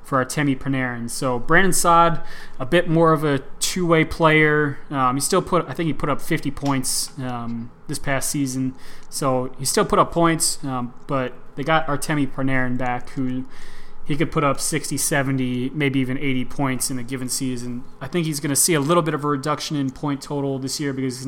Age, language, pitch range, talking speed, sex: 20-39, English, 130-145 Hz, 210 wpm, male